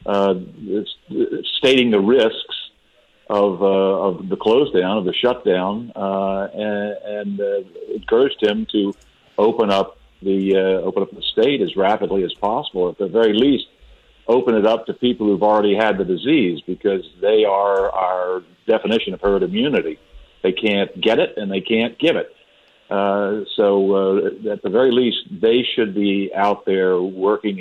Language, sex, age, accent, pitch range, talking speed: English, male, 50-69, American, 95-110 Hz, 170 wpm